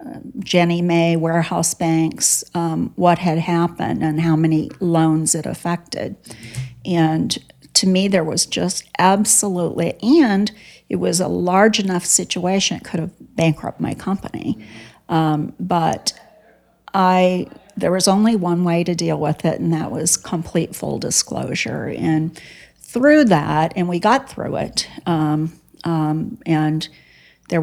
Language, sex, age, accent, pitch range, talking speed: English, female, 40-59, American, 160-185 Hz, 140 wpm